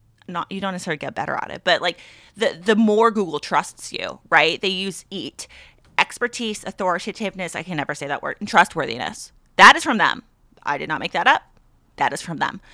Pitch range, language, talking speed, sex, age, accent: 180-230 Hz, English, 205 wpm, female, 30-49, American